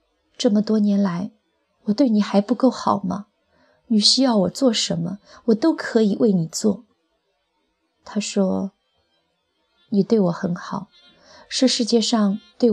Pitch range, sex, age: 195-225 Hz, female, 20-39